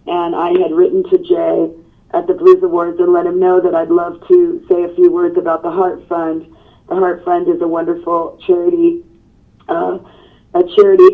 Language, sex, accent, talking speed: English, female, American, 195 wpm